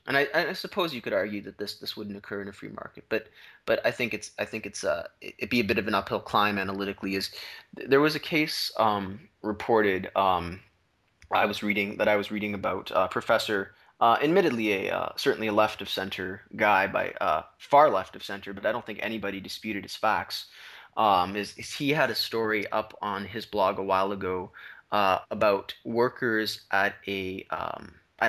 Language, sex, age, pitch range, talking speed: English, male, 20-39, 100-110 Hz, 205 wpm